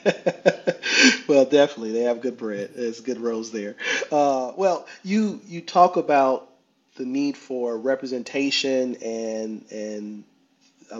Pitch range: 115-155 Hz